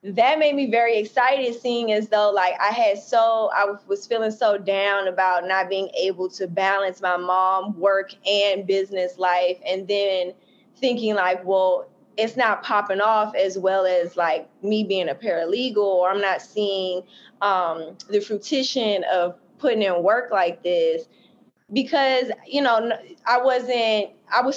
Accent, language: American, English